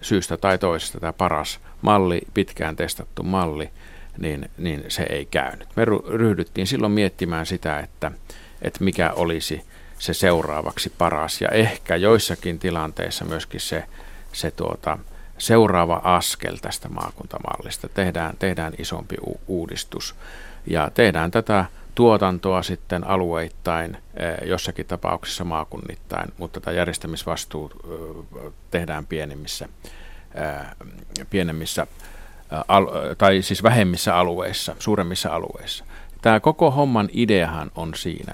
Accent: native